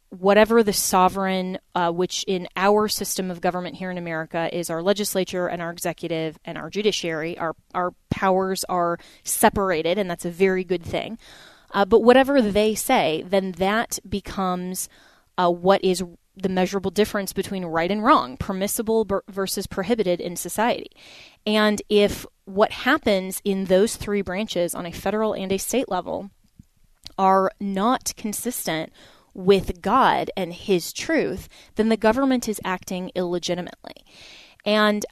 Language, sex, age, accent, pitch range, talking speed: English, female, 20-39, American, 180-210 Hz, 145 wpm